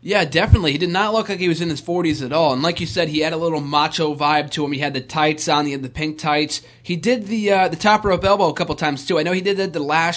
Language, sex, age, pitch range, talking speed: English, male, 20-39, 140-170 Hz, 325 wpm